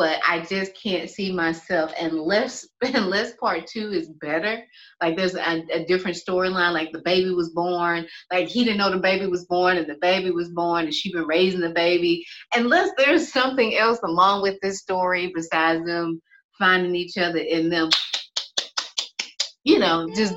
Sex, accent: female, American